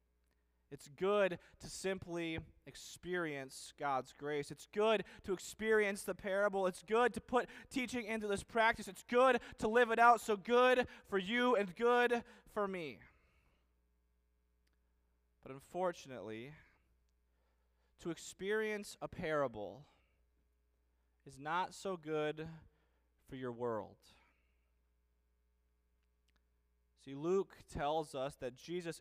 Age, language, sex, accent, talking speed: 20-39, English, male, American, 110 wpm